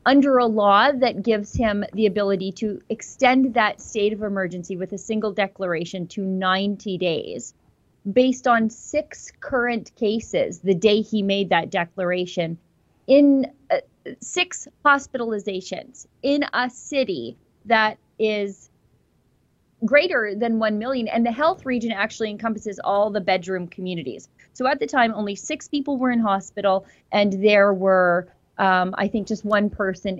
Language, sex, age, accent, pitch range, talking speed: English, female, 30-49, American, 185-230 Hz, 145 wpm